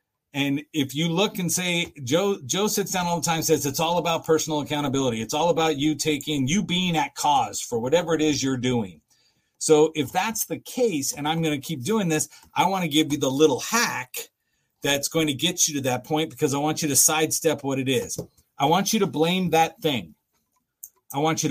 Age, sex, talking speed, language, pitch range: 40-59, male, 225 wpm, English, 130-165 Hz